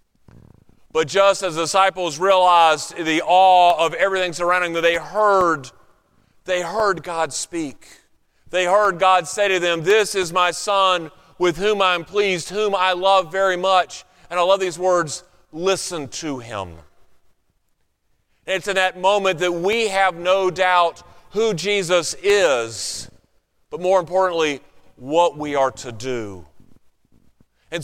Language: English